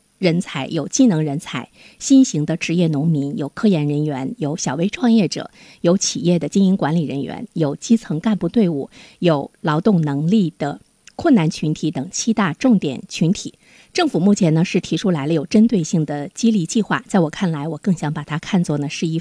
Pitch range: 155-220 Hz